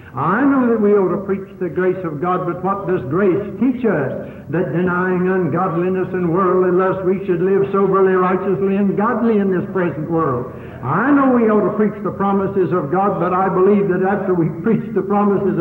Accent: American